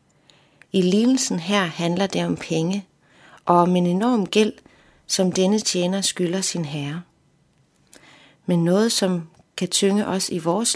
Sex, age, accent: female, 30-49, native